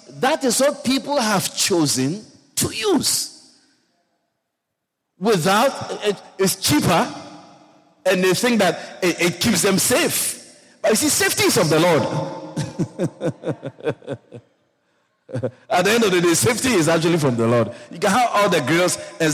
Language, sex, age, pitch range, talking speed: English, male, 50-69, 150-245 Hz, 150 wpm